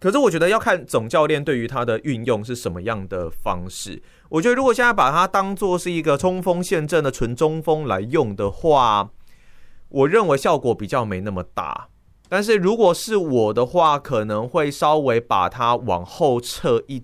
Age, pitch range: 30-49, 110-170 Hz